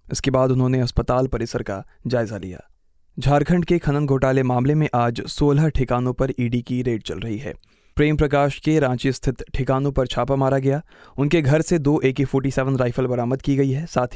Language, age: Hindi, 20-39